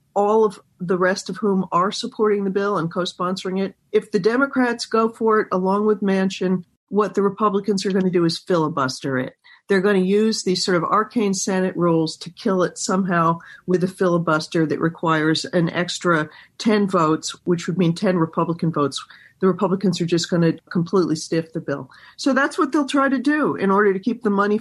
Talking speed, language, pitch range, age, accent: 205 wpm, English, 175-220 Hz, 50-69, American